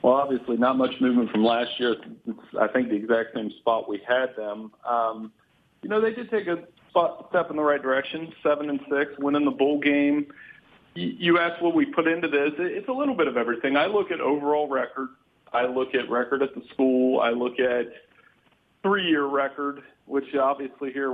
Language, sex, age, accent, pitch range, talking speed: English, male, 40-59, American, 130-165 Hz, 200 wpm